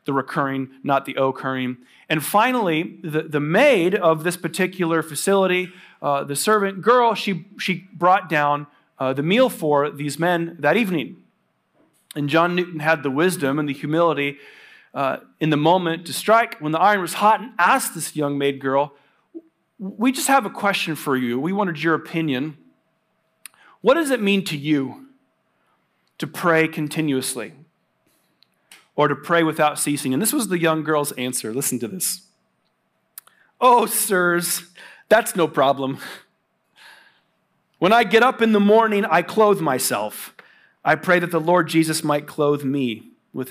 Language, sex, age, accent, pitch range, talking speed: English, male, 40-59, American, 145-200 Hz, 160 wpm